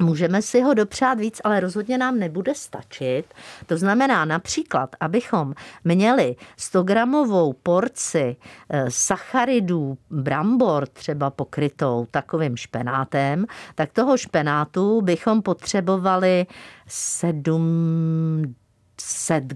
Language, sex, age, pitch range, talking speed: Czech, female, 50-69, 140-210 Hz, 90 wpm